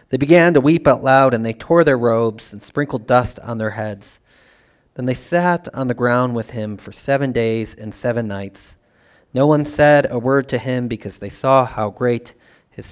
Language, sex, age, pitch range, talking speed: English, male, 30-49, 105-135 Hz, 205 wpm